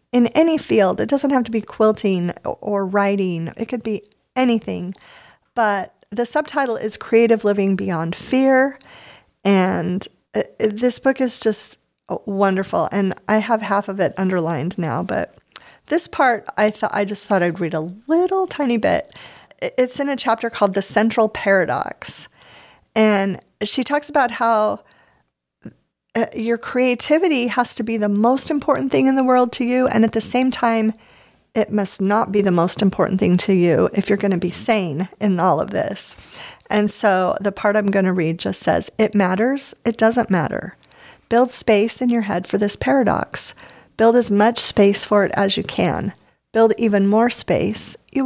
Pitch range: 200-245 Hz